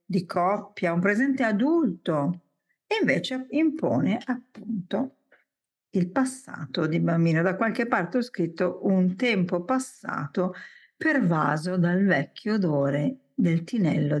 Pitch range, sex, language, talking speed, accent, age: 165-245 Hz, female, Italian, 115 wpm, native, 50-69